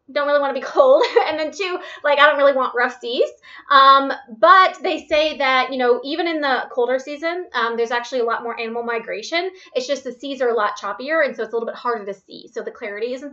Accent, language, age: American, English, 20-39